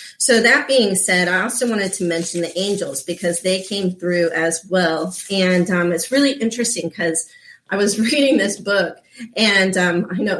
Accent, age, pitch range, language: American, 30-49, 170-225 Hz, English